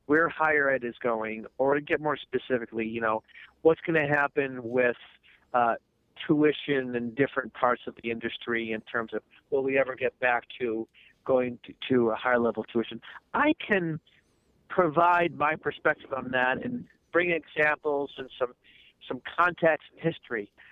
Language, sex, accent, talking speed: English, male, American, 170 wpm